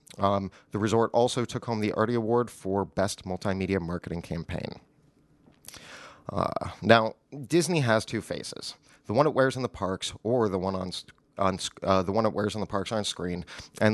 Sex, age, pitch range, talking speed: male, 30-49, 95-125 Hz, 185 wpm